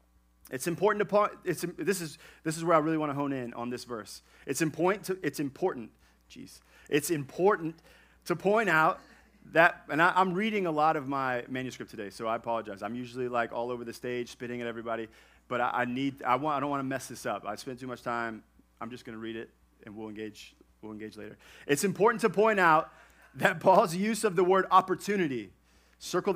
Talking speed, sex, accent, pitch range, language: 220 wpm, male, American, 115-180 Hz, English